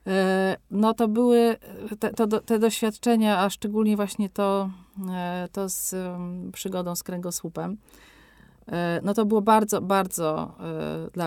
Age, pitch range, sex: 40-59, 180-210 Hz, female